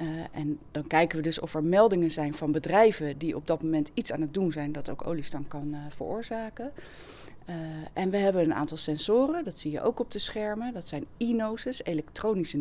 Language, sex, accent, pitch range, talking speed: Dutch, female, Dutch, 155-215 Hz, 215 wpm